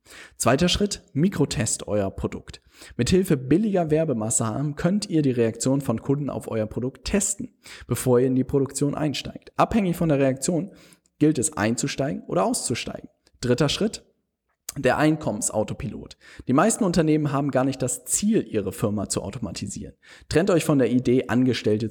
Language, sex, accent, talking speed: German, male, German, 155 wpm